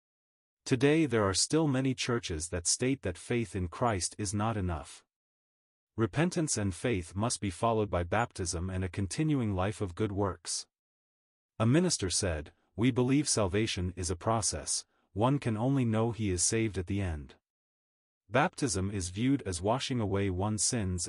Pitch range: 95-120 Hz